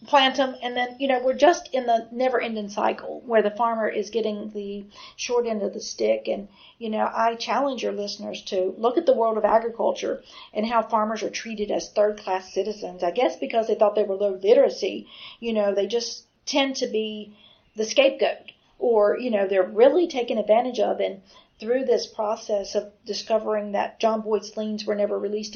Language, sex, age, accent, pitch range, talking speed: English, female, 50-69, American, 210-245 Hz, 200 wpm